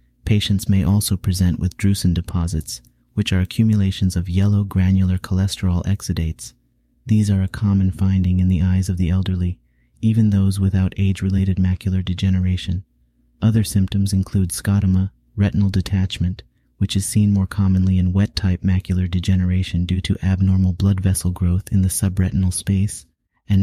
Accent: American